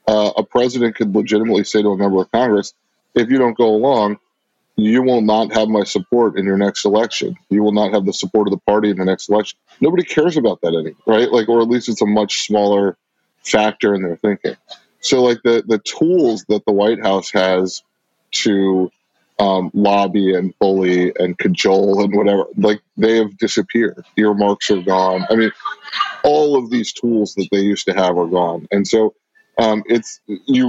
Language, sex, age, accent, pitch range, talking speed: English, male, 20-39, American, 100-125 Hz, 200 wpm